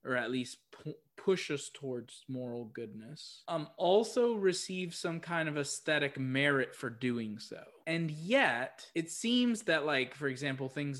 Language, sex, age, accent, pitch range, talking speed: English, male, 20-39, American, 120-150 Hz, 160 wpm